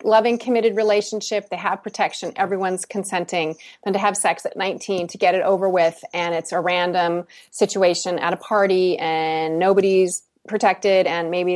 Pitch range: 175-230 Hz